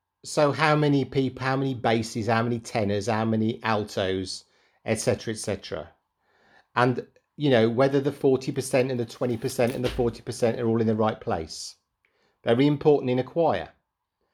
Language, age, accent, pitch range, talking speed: English, 40-59, British, 110-145 Hz, 160 wpm